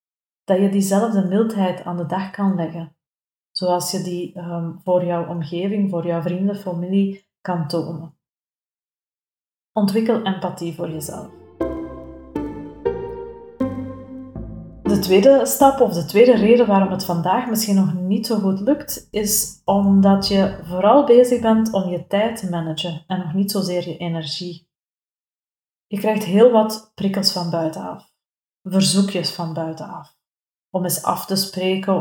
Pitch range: 175-205 Hz